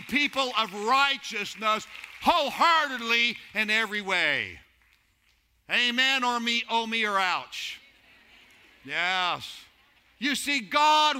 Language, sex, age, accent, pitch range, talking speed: English, male, 60-79, American, 135-210 Hz, 95 wpm